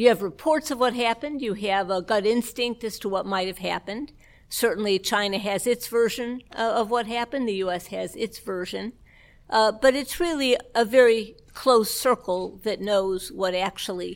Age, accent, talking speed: 50-69, American, 180 wpm